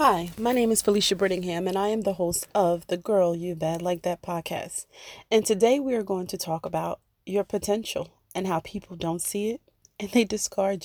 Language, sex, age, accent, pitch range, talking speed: English, female, 30-49, American, 170-210 Hz, 210 wpm